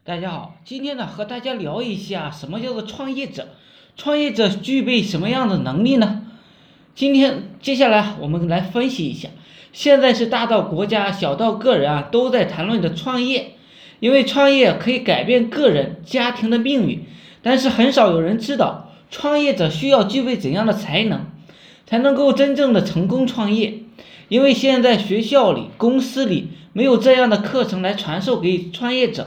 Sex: male